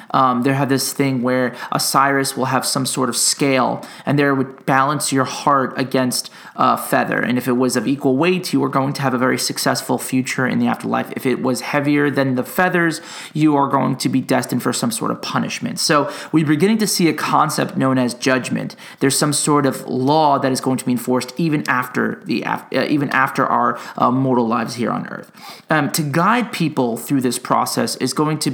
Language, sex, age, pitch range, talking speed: English, male, 30-49, 130-160 Hz, 210 wpm